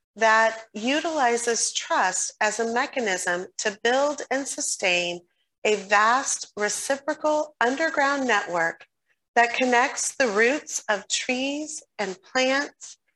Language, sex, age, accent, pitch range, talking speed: English, female, 40-59, American, 200-265 Hz, 105 wpm